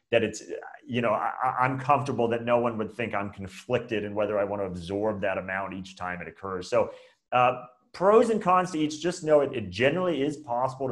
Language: English